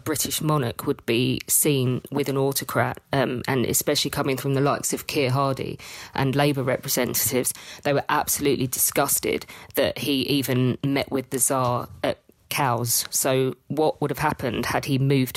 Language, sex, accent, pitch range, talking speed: English, female, British, 130-150 Hz, 165 wpm